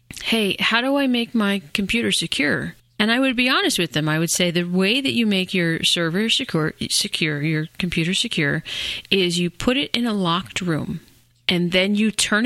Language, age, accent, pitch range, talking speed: English, 30-49, American, 165-225 Hz, 200 wpm